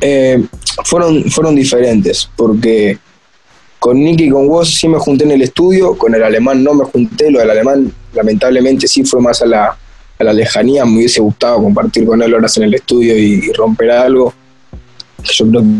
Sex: male